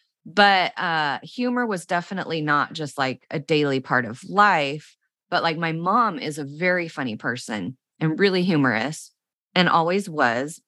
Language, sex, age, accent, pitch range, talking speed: English, female, 30-49, American, 150-200 Hz, 155 wpm